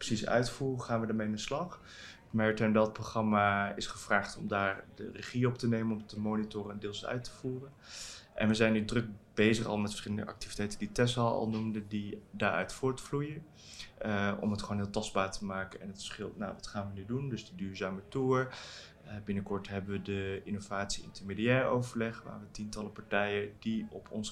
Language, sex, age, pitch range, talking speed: Dutch, male, 20-39, 105-115 Hz, 200 wpm